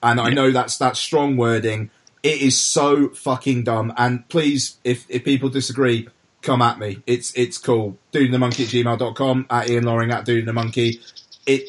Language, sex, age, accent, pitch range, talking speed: English, male, 30-49, British, 115-135 Hz, 180 wpm